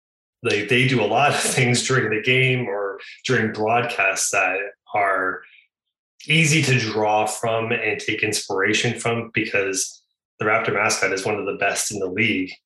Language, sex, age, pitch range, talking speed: English, male, 20-39, 110-145 Hz, 165 wpm